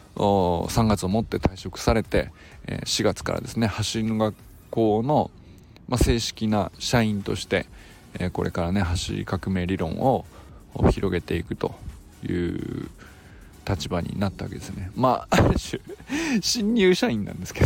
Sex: male